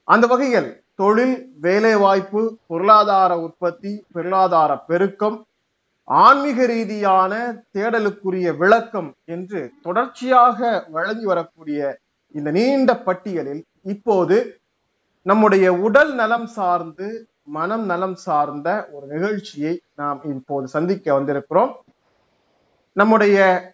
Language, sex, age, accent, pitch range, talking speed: Tamil, male, 30-49, native, 175-230 Hz, 85 wpm